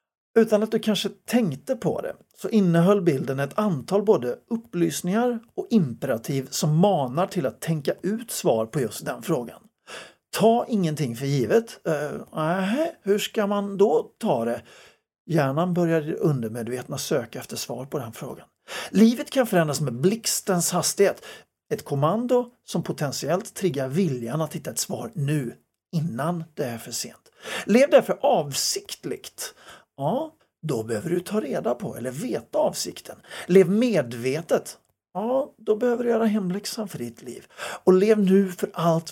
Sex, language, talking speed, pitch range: male, Swedish, 150 wpm, 150-210 Hz